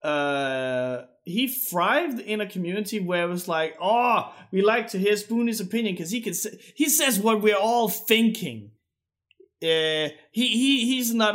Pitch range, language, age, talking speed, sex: 155-225 Hz, English, 30-49, 170 wpm, male